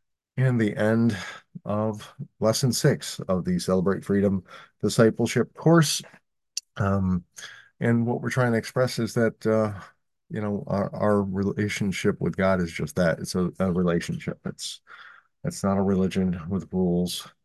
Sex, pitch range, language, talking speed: male, 80-105 Hz, English, 150 wpm